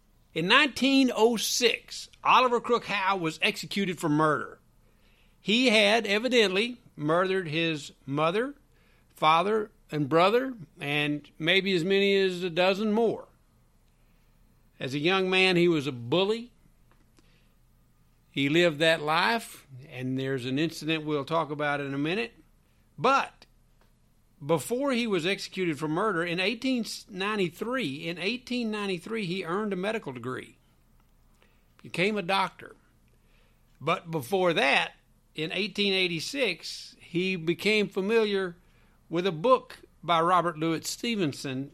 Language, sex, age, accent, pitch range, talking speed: English, male, 60-79, American, 150-205 Hz, 120 wpm